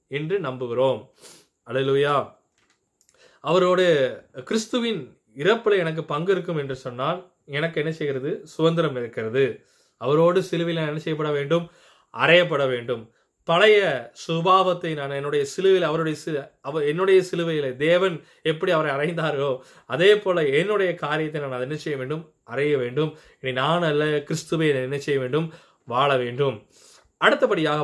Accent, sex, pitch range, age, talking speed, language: native, male, 140-180 Hz, 20-39, 115 wpm, Tamil